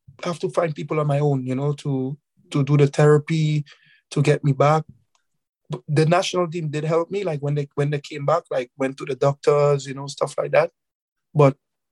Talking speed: 210 wpm